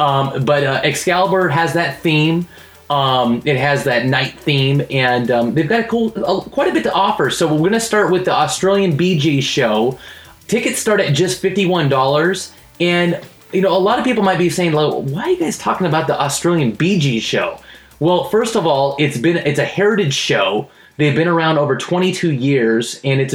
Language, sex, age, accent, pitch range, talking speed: English, male, 30-49, American, 135-175 Hz, 210 wpm